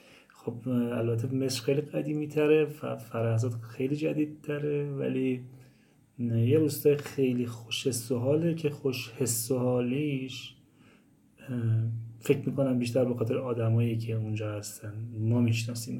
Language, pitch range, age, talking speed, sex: Persian, 115-135 Hz, 30-49, 125 wpm, male